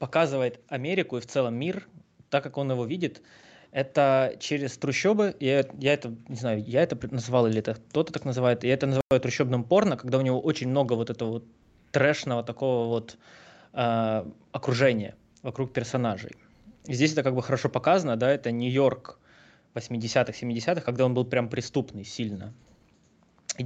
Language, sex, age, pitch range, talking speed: Russian, male, 20-39, 115-140 Hz, 165 wpm